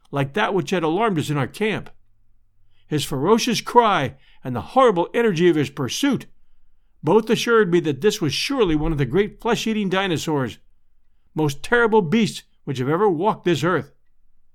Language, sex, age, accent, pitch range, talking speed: English, male, 50-69, American, 140-215 Hz, 170 wpm